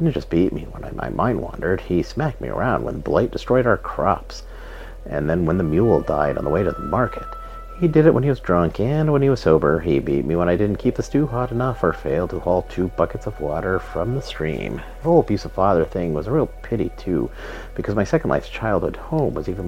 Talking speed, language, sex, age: 255 wpm, English, male, 50-69